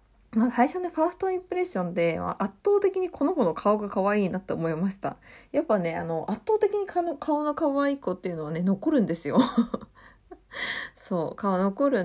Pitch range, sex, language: 180-250 Hz, female, Japanese